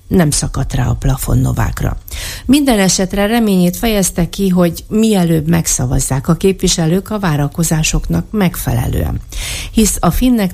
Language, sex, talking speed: Hungarian, female, 120 wpm